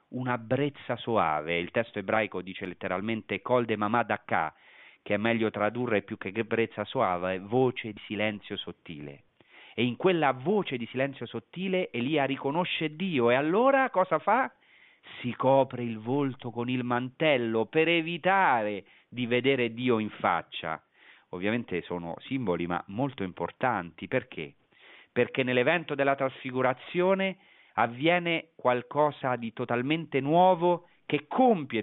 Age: 40-59